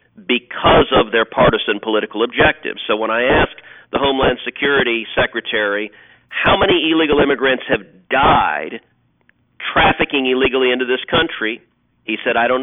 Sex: male